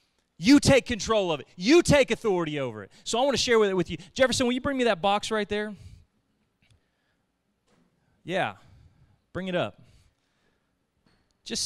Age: 30-49